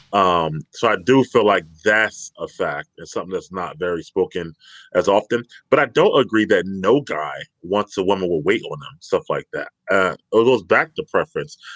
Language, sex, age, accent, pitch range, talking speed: English, male, 30-49, American, 100-165 Hz, 205 wpm